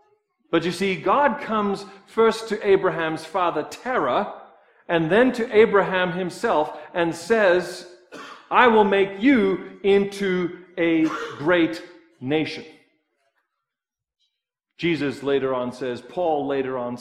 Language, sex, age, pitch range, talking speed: English, male, 50-69, 135-200 Hz, 115 wpm